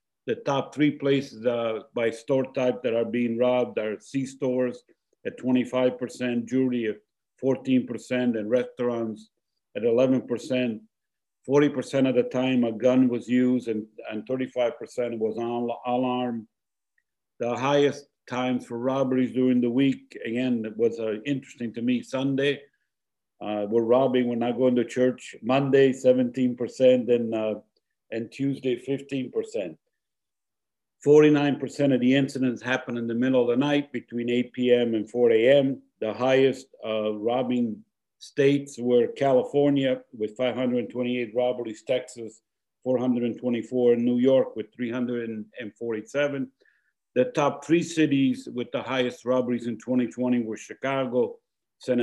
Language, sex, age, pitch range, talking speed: English, male, 50-69, 120-135 Hz, 135 wpm